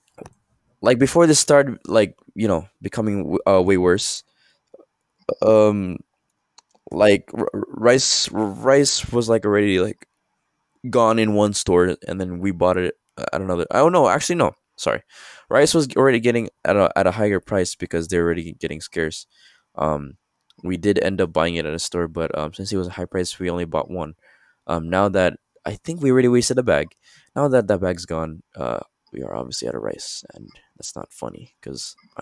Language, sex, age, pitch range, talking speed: English, male, 20-39, 90-125 Hz, 190 wpm